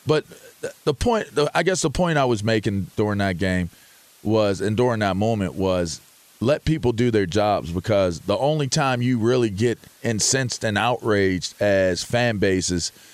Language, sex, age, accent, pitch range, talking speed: English, male, 40-59, American, 100-125 Hz, 175 wpm